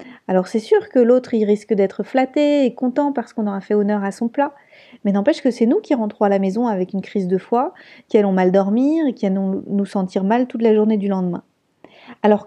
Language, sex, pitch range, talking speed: French, female, 200-255 Hz, 240 wpm